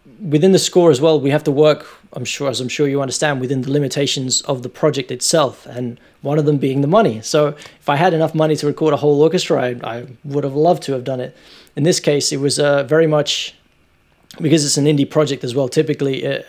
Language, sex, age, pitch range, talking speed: English, male, 20-39, 130-150 Hz, 245 wpm